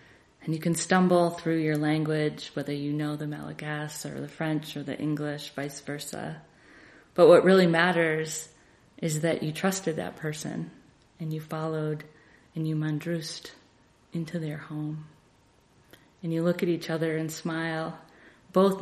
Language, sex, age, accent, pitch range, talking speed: English, female, 30-49, American, 155-180 Hz, 155 wpm